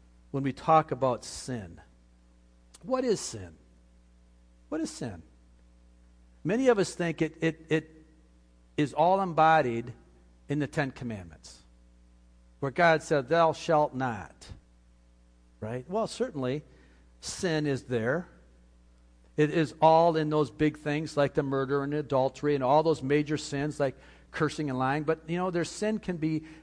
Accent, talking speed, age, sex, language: American, 150 wpm, 50-69, male, English